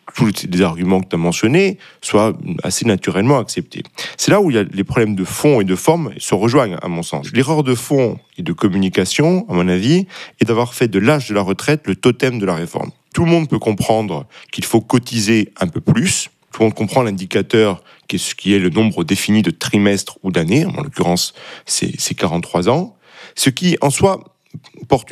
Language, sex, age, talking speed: French, male, 40-59, 215 wpm